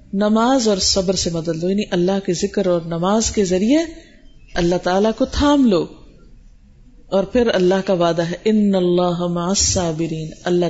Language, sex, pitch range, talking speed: Urdu, female, 190-265 Hz, 155 wpm